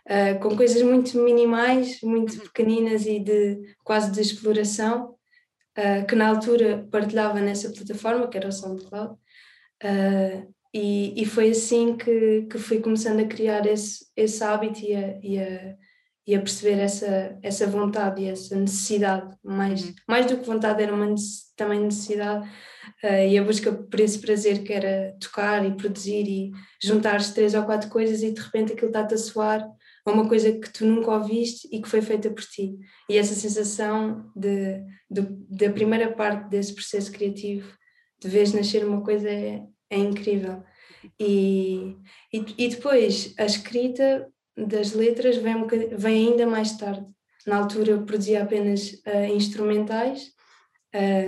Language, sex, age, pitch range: Portuguese, female, 20-39, 200-225 Hz